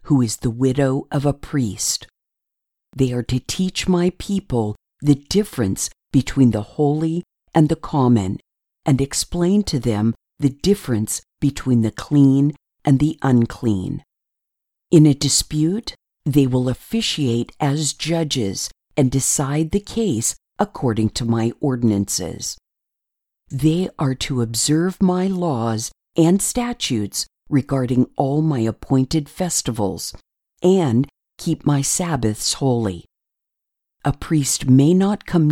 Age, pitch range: 50-69, 120-160 Hz